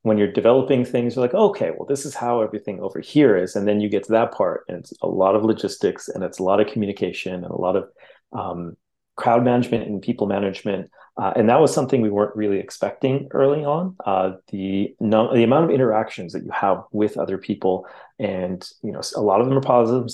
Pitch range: 95-120 Hz